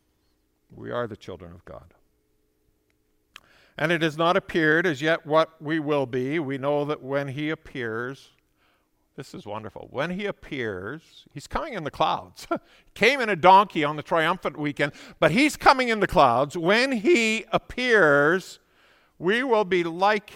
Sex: male